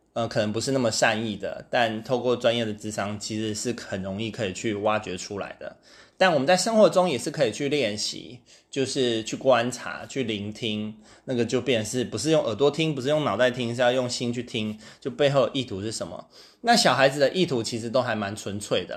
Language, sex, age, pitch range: Chinese, male, 20-39, 110-145 Hz